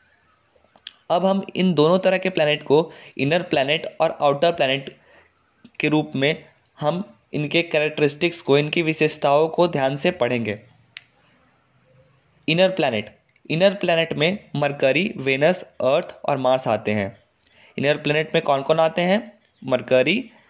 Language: Hindi